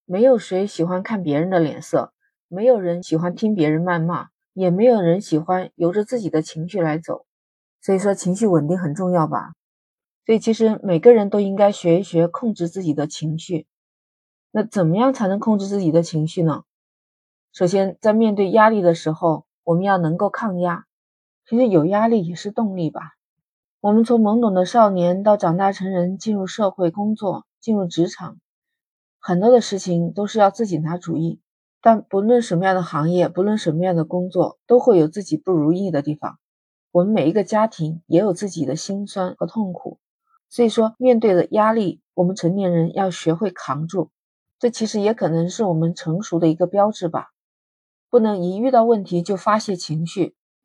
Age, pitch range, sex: 30-49, 170-210 Hz, female